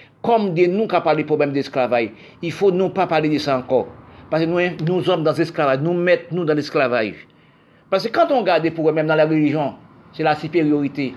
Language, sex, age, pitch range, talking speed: French, male, 50-69, 150-185 Hz, 240 wpm